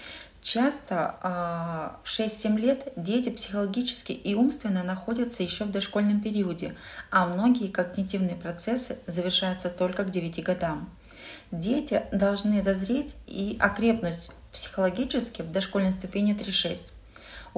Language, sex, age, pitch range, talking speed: Russian, female, 30-49, 180-230 Hz, 110 wpm